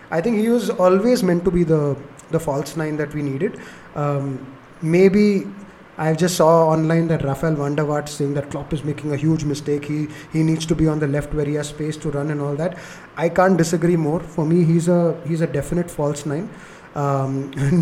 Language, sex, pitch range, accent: English, male, 150-180 Hz, Indian